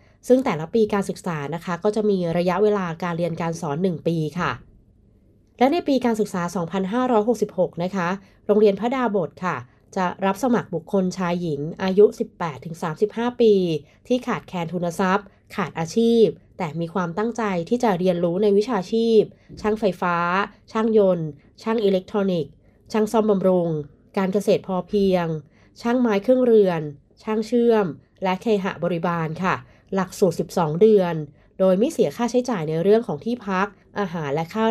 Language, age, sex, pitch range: Thai, 20-39, female, 175-215 Hz